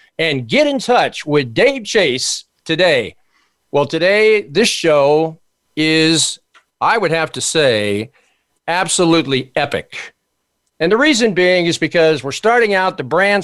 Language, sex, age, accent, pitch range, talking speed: English, male, 50-69, American, 155-195 Hz, 140 wpm